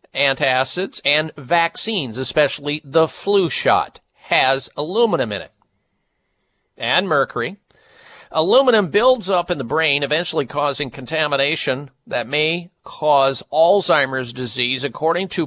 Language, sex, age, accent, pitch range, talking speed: English, male, 50-69, American, 135-180 Hz, 115 wpm